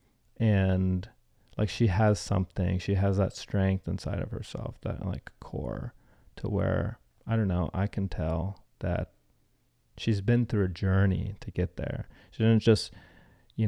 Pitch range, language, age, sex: 95-110 Hz, English, 30-49, male